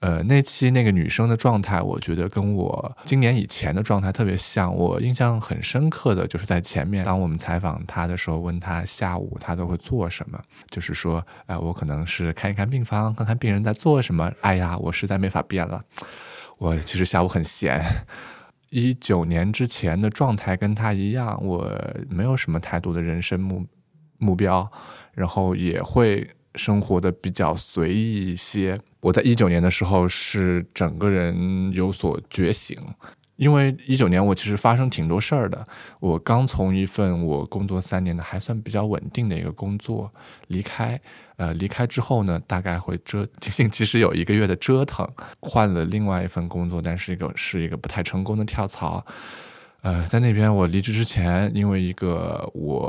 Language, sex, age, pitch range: Chinese, male, 20-39, 90-110 Hz